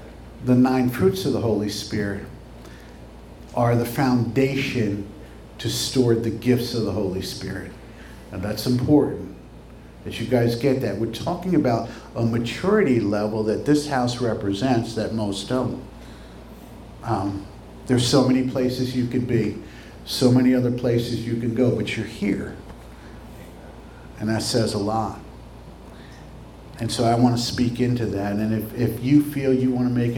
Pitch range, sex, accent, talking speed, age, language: 110-130 Hz, male, American, 155 wpm, 50-69, English